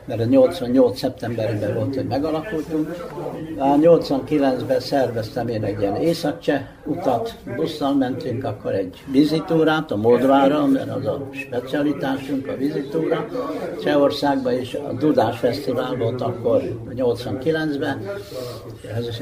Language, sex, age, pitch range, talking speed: Hungarian, male, 60-79, 125-180 Hz, 115 wpm